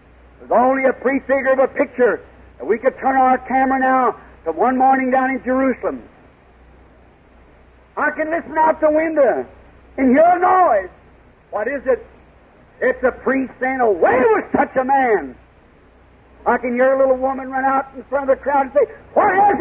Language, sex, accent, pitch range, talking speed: English, male, American, 255-290 Hz, 185 wpm